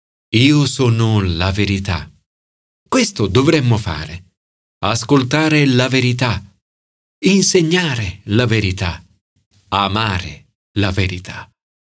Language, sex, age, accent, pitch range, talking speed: Italian, male, 50-69, native, 100-145 Hz, 80 wpm